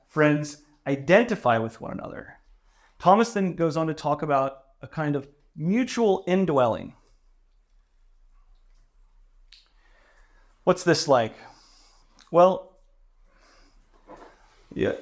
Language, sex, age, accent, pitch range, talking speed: English, male, 30-49, American, 135-175 Hz, 90 wpm